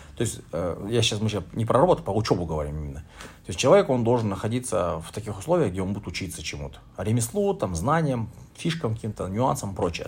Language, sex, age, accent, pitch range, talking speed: Russian, male, 30-49, native, 90-120 Hz, 200 wpm